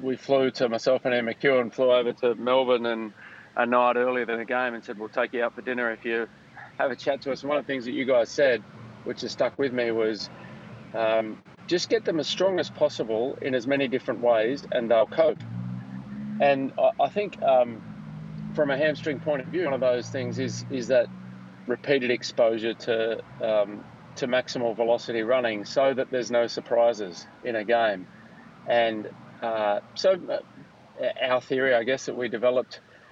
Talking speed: 195 wpm